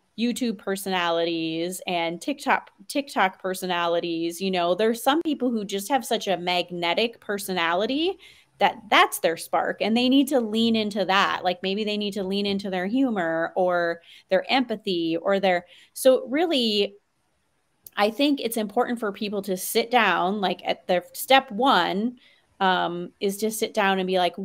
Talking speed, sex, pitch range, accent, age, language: 165 wpm, female, 185-240 Hz, American, 30-49, English